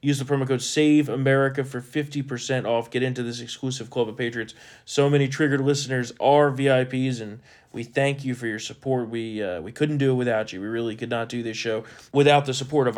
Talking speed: 220 wpm